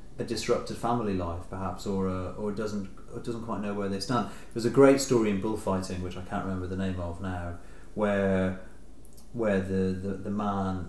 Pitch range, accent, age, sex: 95-120 Hz, British, 40-59, male